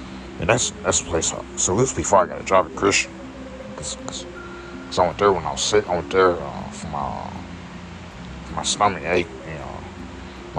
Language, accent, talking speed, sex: English, American, 205 wpm, male